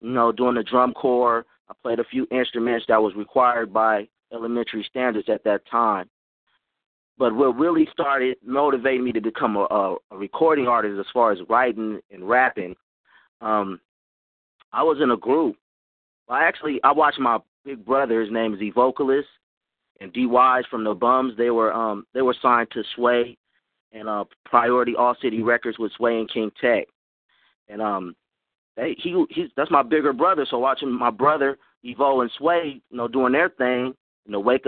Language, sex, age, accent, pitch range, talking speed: English, male, 30-49, American, 110-125 Hz, 185 wpm